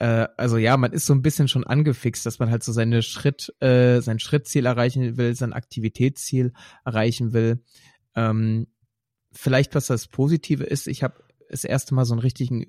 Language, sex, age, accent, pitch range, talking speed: German, male, 30-49, German, 105-125 Hz, 170 wpm